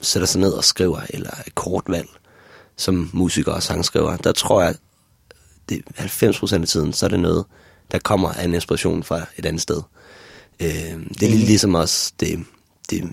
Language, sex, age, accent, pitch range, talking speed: Danish, male, 30-49, native, 90-100 Hz, 190 wpm